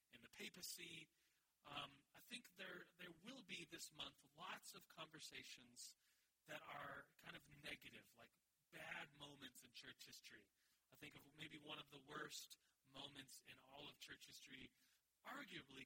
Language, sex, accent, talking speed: English, male, American, 155 wpm